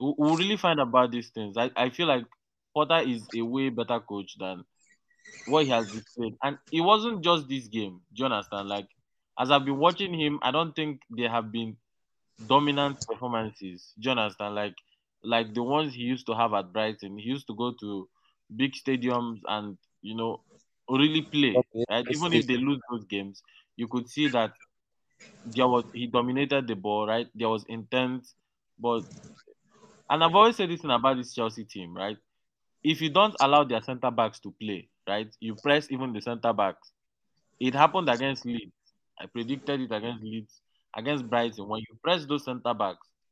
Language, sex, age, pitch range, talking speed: English, male, 20-39, 110-140 Hz, 175 wpm